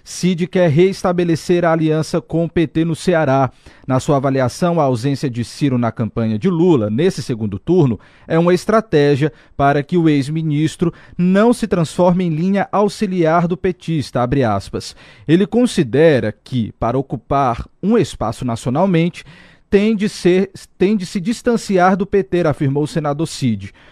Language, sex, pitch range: Portuguese, male, 135-180 Hz